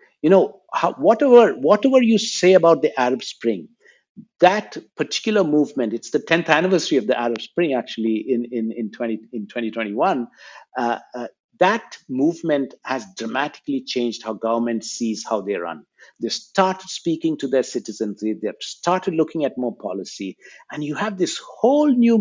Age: 60-79